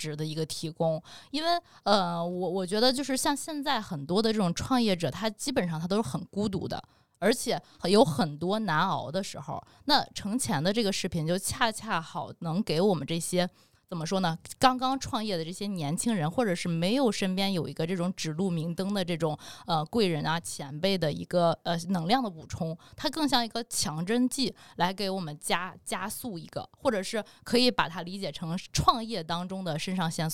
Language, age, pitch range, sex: Chinese, 20-39, 160-215 Hz, female